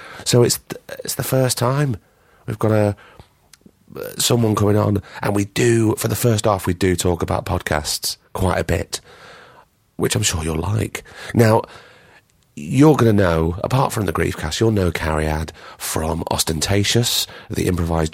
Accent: British